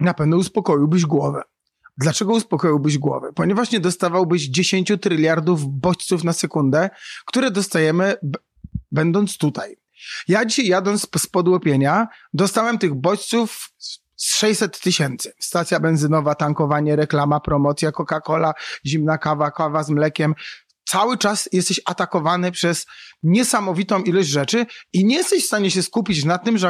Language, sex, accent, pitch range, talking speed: Polish, male, native, 155-210 Hz, 135 wpm